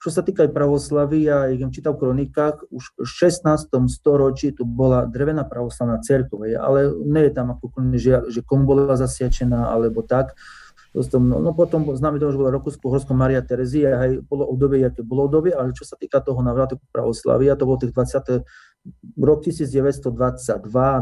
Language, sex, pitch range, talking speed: Slovak, male, 120-140 Hz, 185 wpm